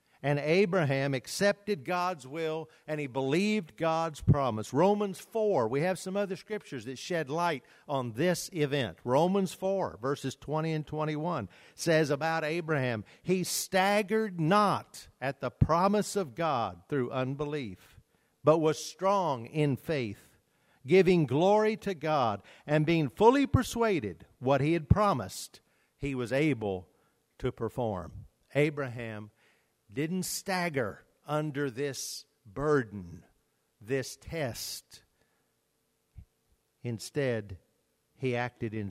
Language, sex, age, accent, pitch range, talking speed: English, male, 50-69, American, 125-175 Hz, 115 wpm